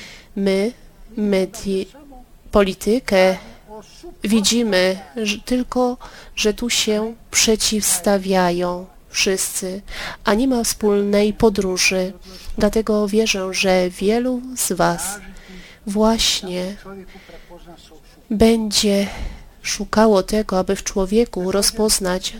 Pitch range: 185-215 Hz